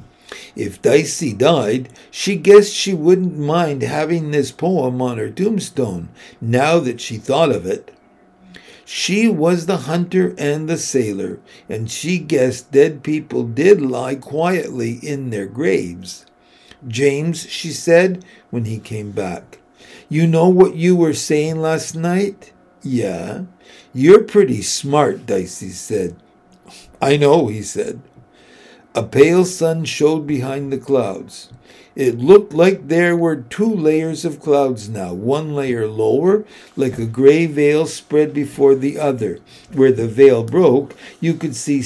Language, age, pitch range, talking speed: English, 60-79, 130-175 Hz, 140 wpm